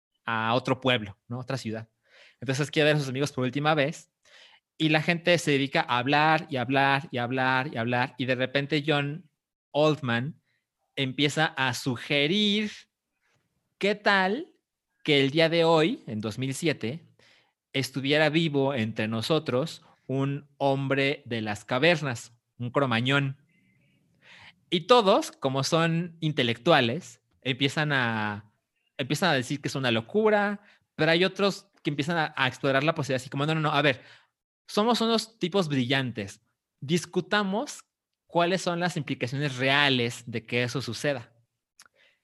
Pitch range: 130-165 Hz